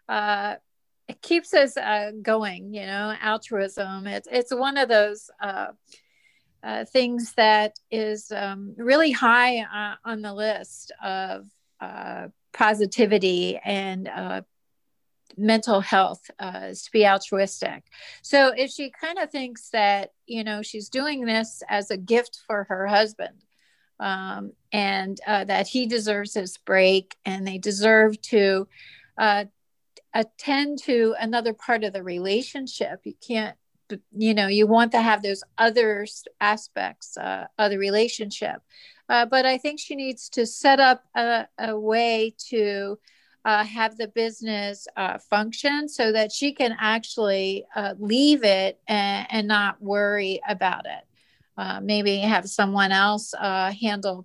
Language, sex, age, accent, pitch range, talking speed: English, female, 40-59, American, 200-235 Hz, 145 wpm